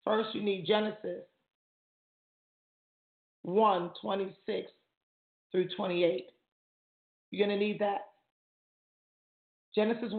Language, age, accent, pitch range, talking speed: English, 40-59, American, 200-240 Hz, 80 wpm